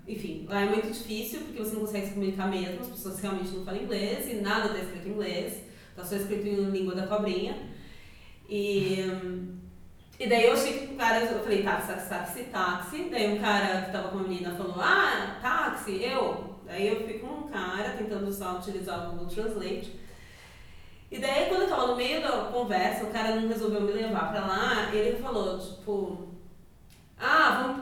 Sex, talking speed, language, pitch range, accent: female, 195 wpm, Portuguese, 190-225 Hz, Brazilian